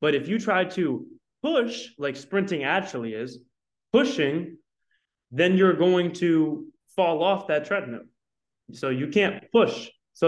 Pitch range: 130-170 Hz